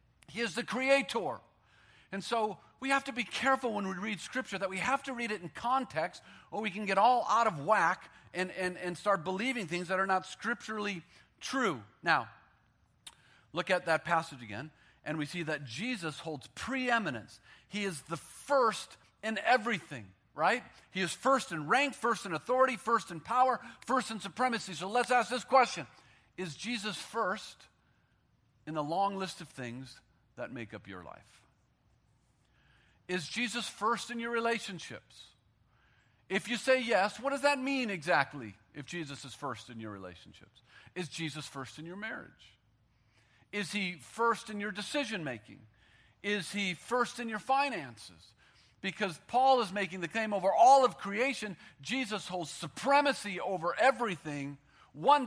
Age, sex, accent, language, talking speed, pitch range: 40-59, male, American, English, 165 wpm, 150-235 Hz